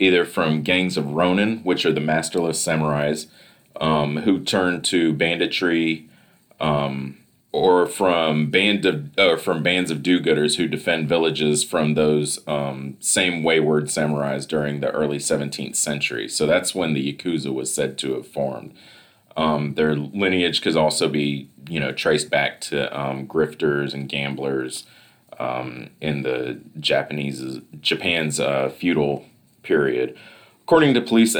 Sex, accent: male, American